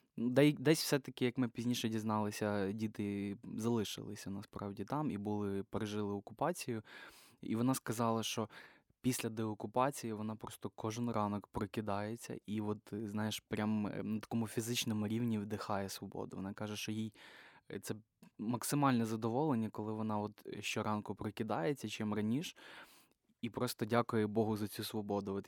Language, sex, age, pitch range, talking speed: Ukrainian, male, 20-39, 105-115 Hz, 135 wpm